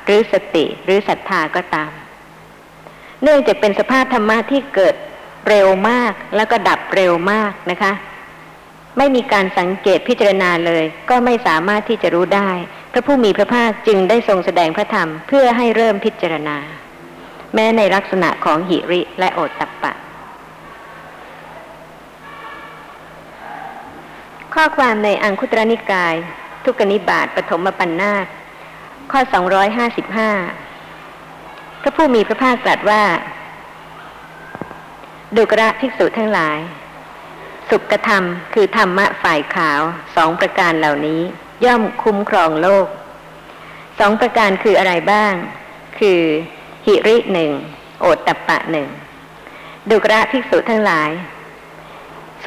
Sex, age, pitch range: male, 60-79, 180-225 Hz